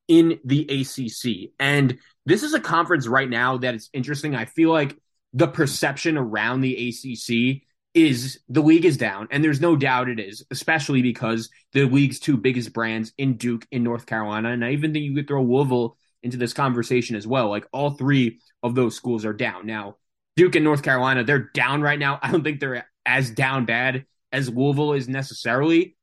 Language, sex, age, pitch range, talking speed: English, male, 20-39, 120-150 Hz, 195 wpm